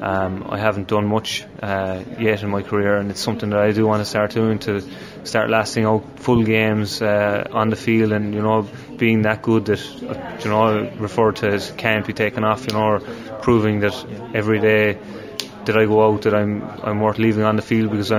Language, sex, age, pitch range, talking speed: English, male, 20-39, 105-110 Hz, 230 wpm